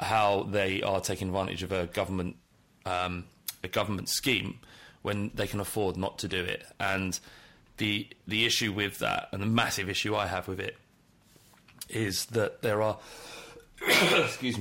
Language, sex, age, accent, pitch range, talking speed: English, male, 30-49, British, 90-105 Hz, 160 wpm